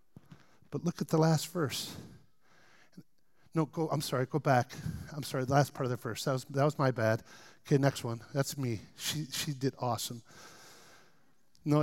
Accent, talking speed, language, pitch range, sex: American, 185 wpm, English, 115-140 Hz, male